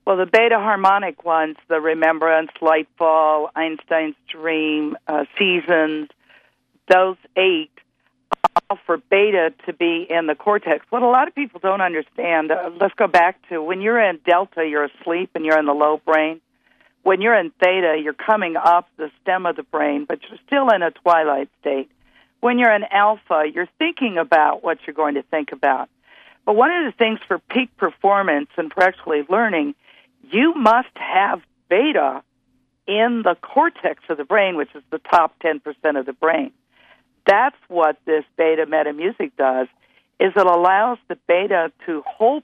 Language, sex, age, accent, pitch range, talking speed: English, female, 50-69, American, 155-210 Hz, 170 wpm